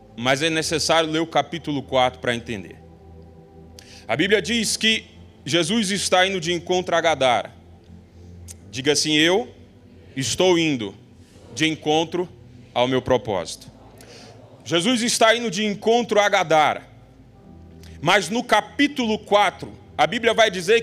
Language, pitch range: Portuguese, 125-210 Hz